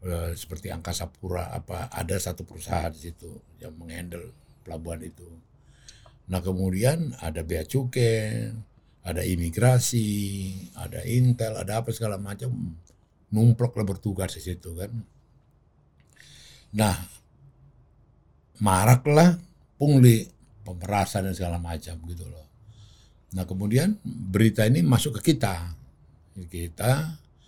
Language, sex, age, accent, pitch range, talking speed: Indonesian, male, 60-79, native, 90-115 Hz, 105 wpm